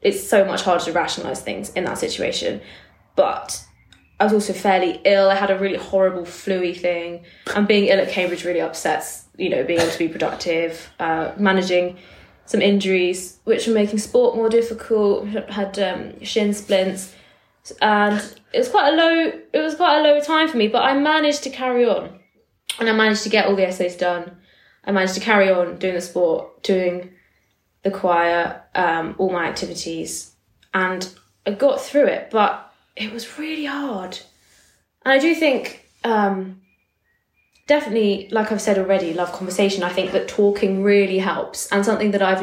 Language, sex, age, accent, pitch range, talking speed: English, female, 20-39, British, 180-220 Hz, 180 wpm